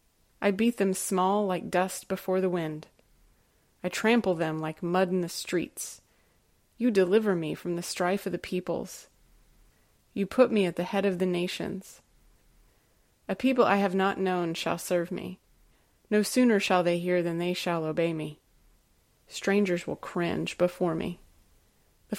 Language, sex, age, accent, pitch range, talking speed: English, female, 30-49, American, 170-200 Hz, 160 wpm